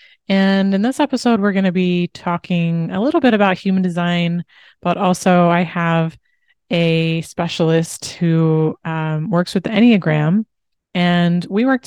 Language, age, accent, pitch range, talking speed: English, 20-39, American, 170-200 Hz, 145 wpm